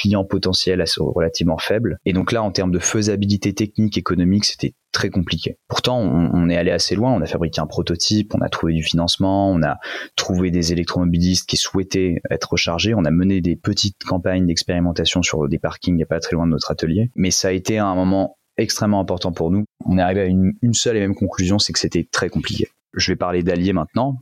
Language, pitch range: French, 80-100 Hz